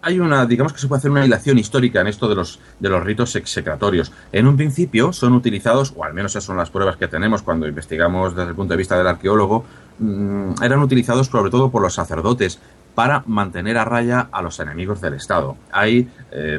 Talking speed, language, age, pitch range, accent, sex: 215 wpm, Spanish, 30-49, 90-120 Hz, Spanish, male